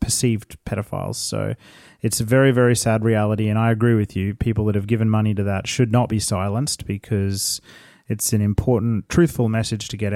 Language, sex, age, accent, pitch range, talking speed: English, male, 30-49, Australian, 105-125 Hz, 195 wpm